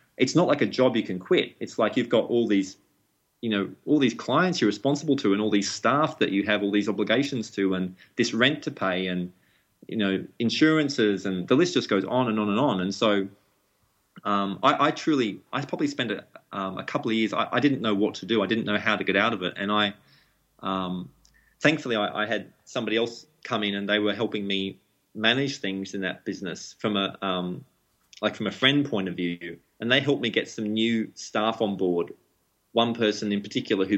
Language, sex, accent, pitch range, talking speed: English, male, Australian, 95-115 Hz, 235 wpm